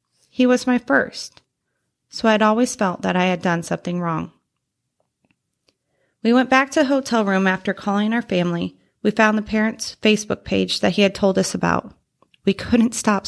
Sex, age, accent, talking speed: female, 30-49, American, 185 wpm